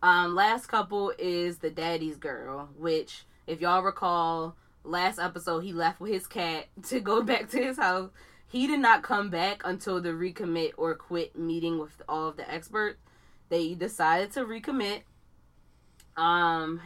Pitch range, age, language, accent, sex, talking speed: 155-175 Hz, 20-39, English, American, female, 160 wpm